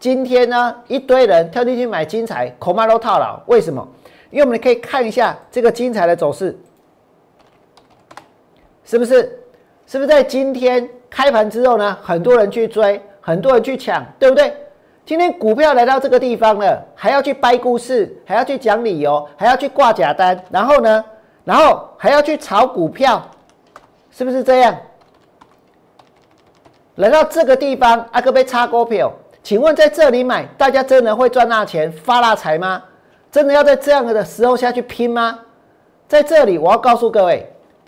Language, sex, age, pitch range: Chinese, male, 50-69, 215-265 Hz